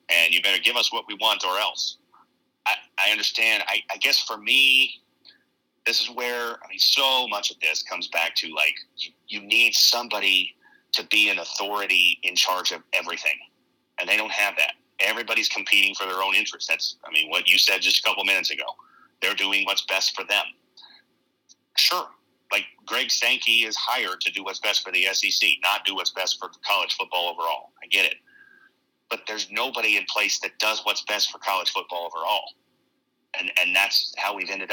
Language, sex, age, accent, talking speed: English, male, 30-49, American, 195 wpm